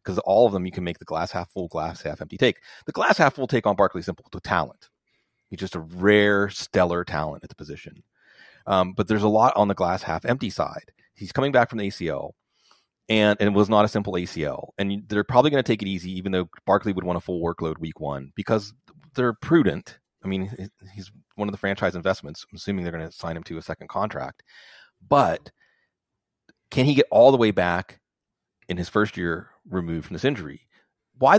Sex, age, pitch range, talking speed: male, 30-49, 90-115 Hz, 220 wpm